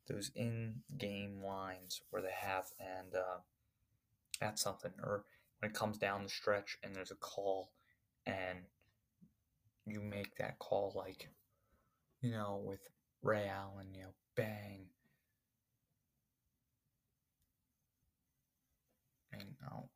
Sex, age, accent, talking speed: male, 20-39, American, 110 wpm